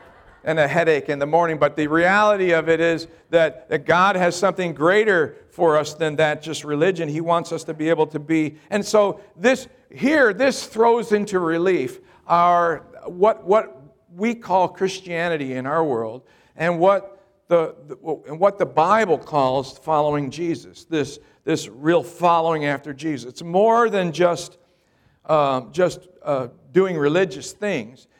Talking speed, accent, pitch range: 160 wpm, American, 150-185 Hz